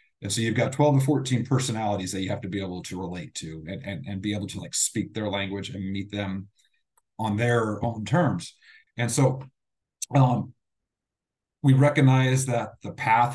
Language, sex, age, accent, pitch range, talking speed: English, male, 30-49, American, 100-120 Hz, 190 wpm